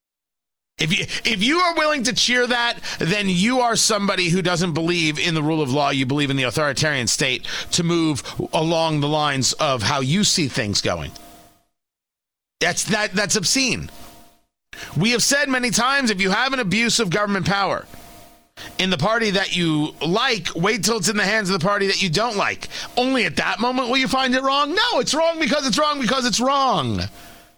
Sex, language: male, English